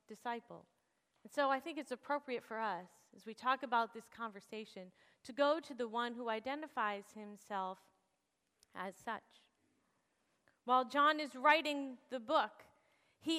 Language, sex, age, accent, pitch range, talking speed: English, female, 30-49, American, 215-285 Hz, 145 wpm